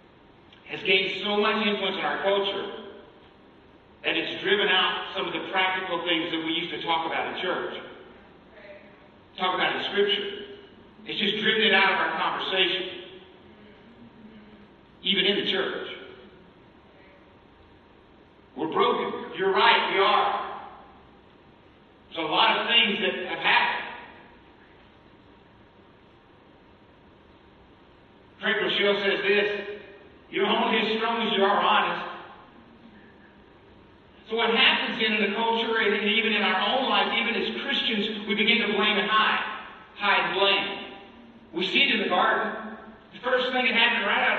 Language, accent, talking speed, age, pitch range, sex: English, American, 140 wpm, 50-69, 190-220 Hz, male